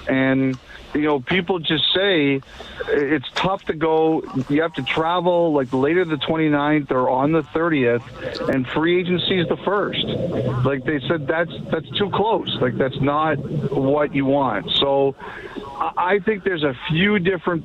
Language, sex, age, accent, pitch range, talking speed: English, male, 50-69, American, 130-160 Hz, 165 wpm